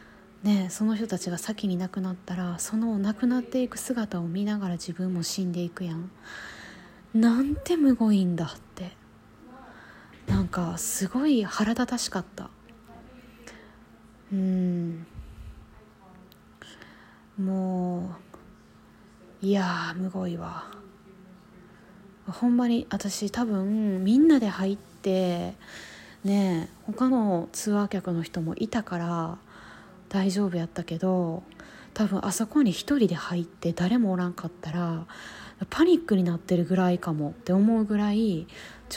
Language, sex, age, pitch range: Japanese, female, 20-39, 175-220 Hz